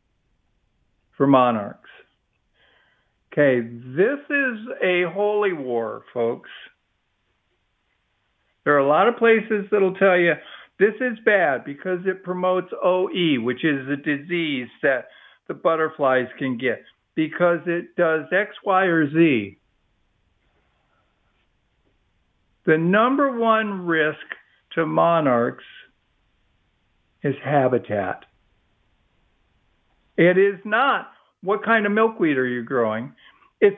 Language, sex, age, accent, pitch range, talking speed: English, male, 50-69, American, 125-195 Hz, 110 wpm